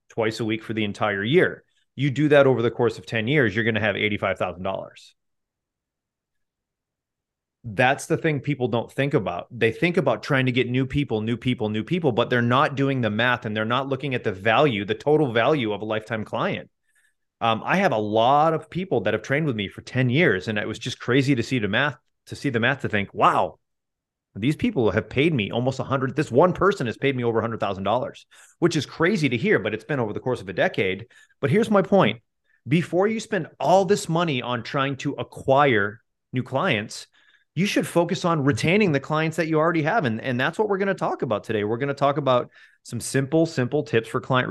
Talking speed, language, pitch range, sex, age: 230 wpm, English, 110-150 Hz, male, 30-49